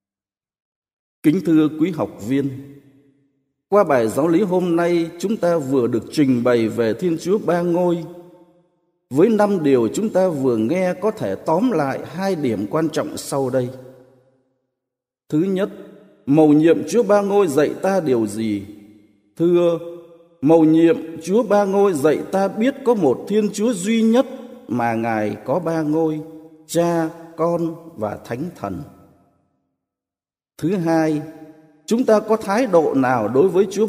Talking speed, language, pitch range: 150 wpm, Vietnamese, 135-190 Hz